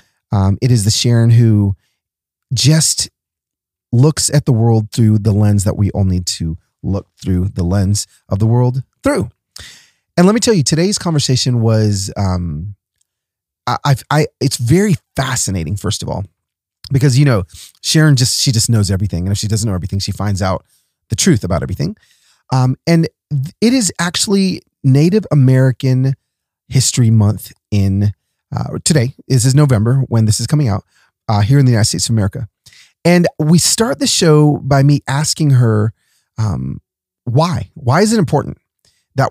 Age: 30-49